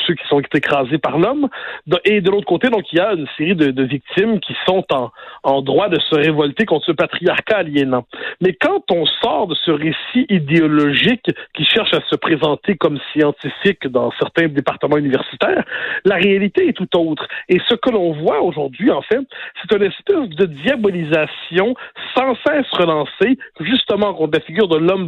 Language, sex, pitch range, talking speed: French, male, 160-230 Hz, 185 wpm